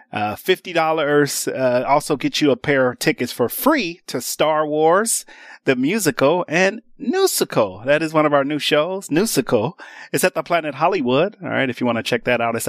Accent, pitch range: American, 130-175 Hz